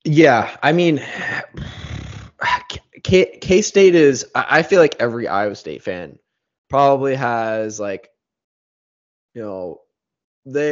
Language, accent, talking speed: English, American, 110 wpm